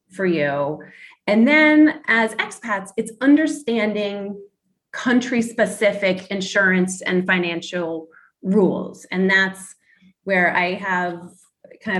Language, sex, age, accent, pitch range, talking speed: English, female, 30-49, American, 170-210 Hz, 95 wpm